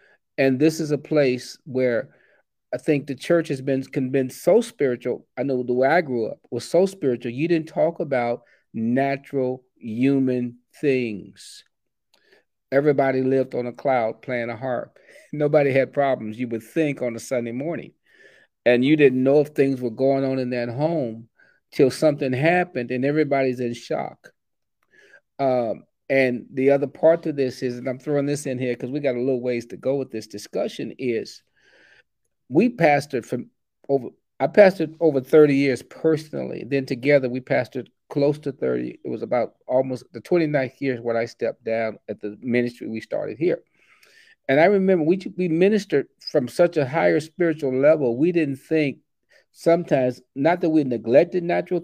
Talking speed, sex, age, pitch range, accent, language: 175 wpm, male, 40-59, 125-160 Hz, American, English